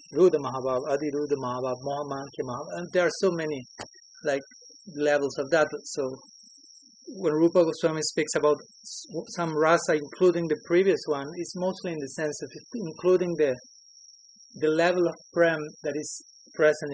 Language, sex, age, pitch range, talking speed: English, male, 30-49, 140-185 Hz, 145 wpm